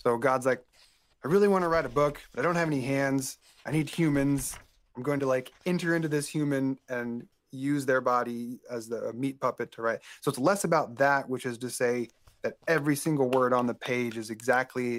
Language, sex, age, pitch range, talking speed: English, male, 30-49, 120-145 Hz, 225 wpm